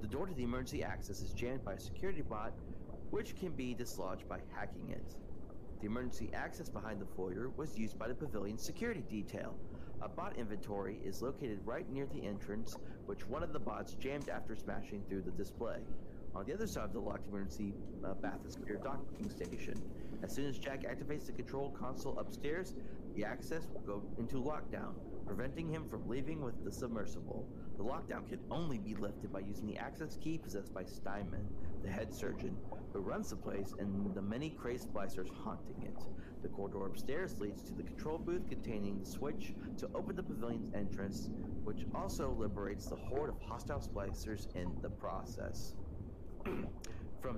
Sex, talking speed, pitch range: male, 180 wpm, 95-120 Hz